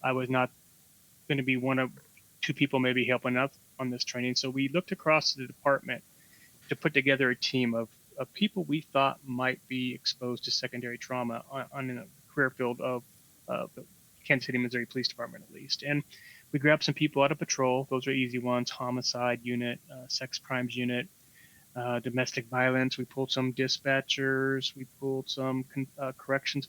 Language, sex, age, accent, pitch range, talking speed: English, male, 30-49, American, 125-140 Hz, 190 wpm